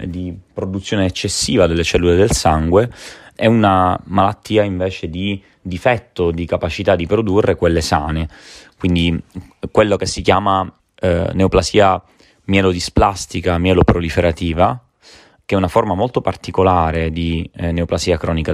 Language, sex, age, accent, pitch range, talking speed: Italian, male, 30-49, native, 85-100 Hz, 125 wpm